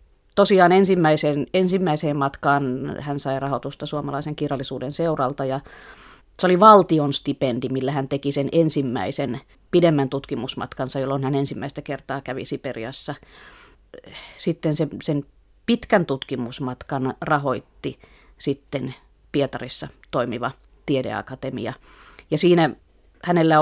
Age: 30-49